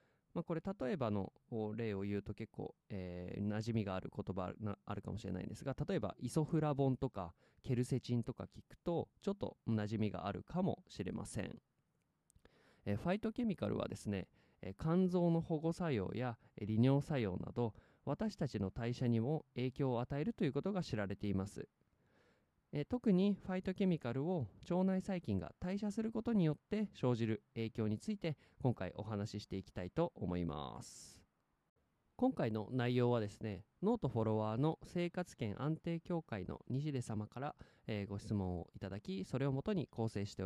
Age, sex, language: 20-39, male, Japanese